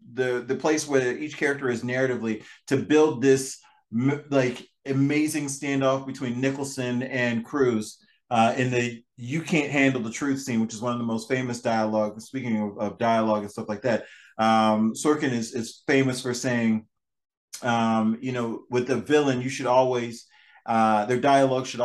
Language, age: English, 30-49